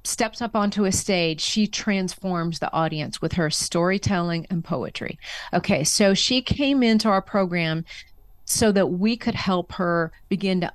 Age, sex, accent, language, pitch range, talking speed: 40-59, female, American, English, 170-200 Hz, 160 wpm